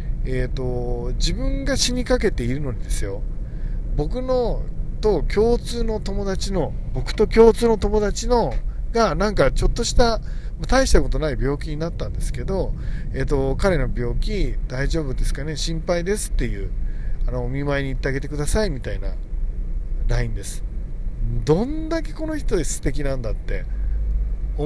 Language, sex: Japanese, male